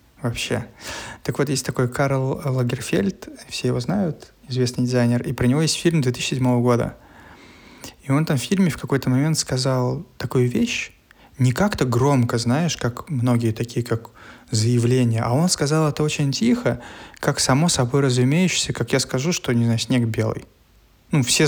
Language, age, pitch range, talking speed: Russian, 20-39, 120-145 Hz, 165 wpm